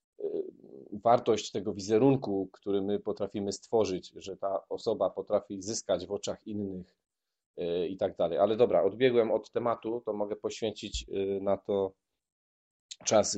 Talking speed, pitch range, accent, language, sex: 130 wpm, 100-130 Hz, native, Polish, male